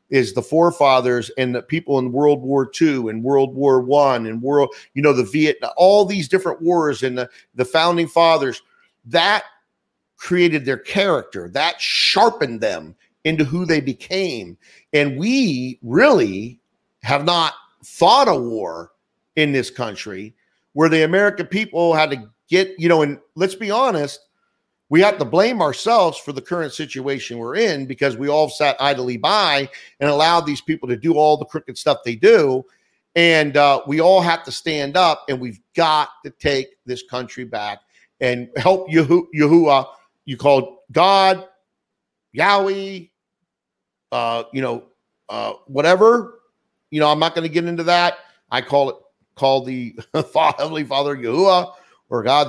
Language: English